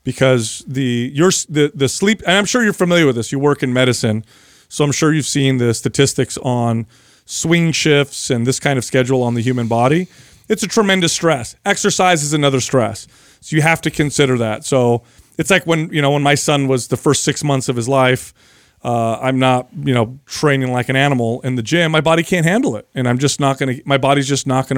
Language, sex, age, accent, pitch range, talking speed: English, male, 30-49, American, 130-160 Hz, 230 wpm